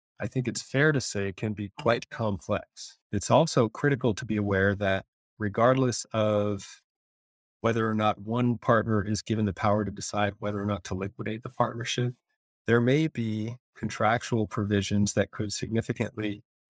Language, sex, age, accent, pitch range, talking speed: English, male, 40-59, American, 100-120 Hz, 165 wpm